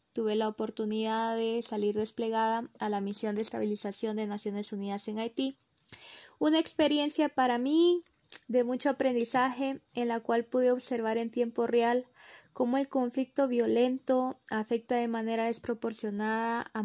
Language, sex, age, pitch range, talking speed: Spanish, female, 20-39, 220-255 Hz, 140 wpm